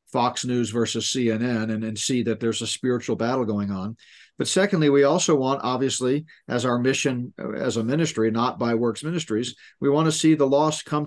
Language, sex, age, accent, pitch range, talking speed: English, male, 50-69, American, 115-145 Hz, 200 wpm